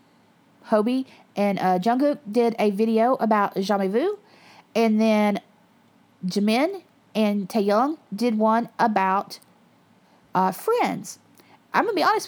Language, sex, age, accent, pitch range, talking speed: English, female, 40-59, American, 195-250 Hz, 120 wpm